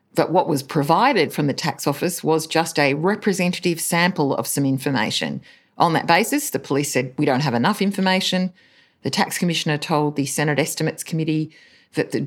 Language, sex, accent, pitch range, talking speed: English, female, Australian, 135-160 Hz, 180 wpm